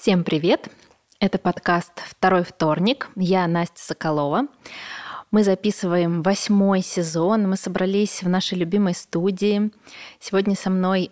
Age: 20-39